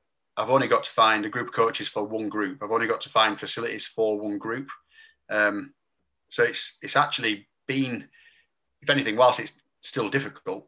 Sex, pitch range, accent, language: male, 105-155 Hz, British, English